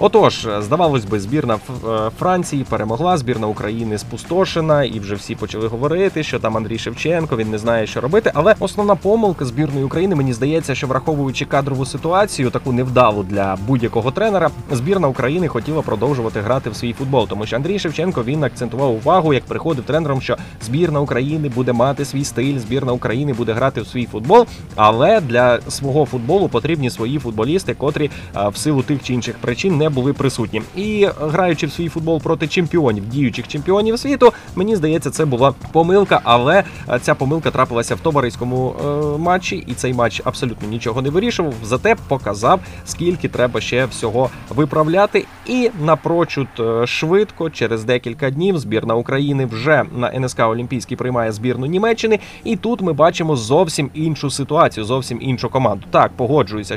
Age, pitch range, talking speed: 20-39, 120-160 Hz, 160 wpm